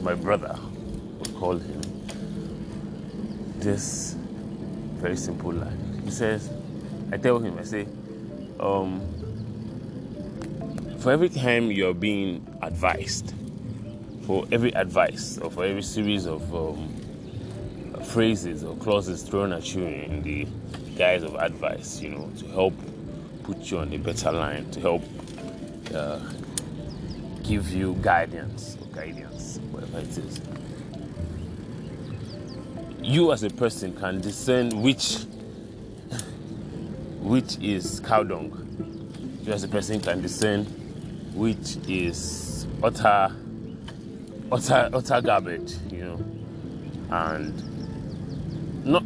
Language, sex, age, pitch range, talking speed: English, male, 20-39, 95-115 Hz, 110 wpm